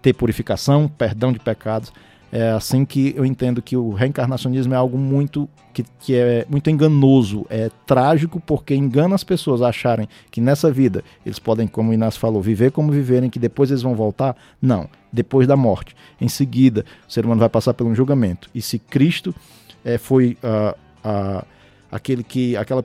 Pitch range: 110-135 Hz